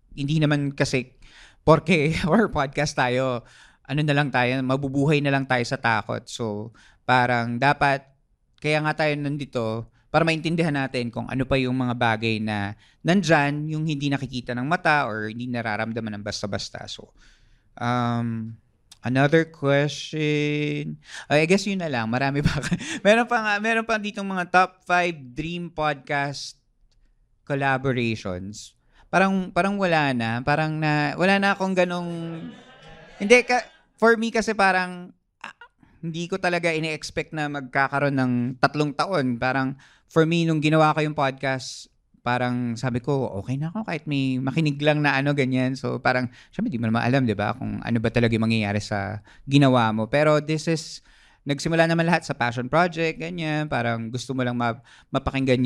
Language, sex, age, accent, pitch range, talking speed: Filipino, male, 20-39, native, 120-155 Hz, 160 wpm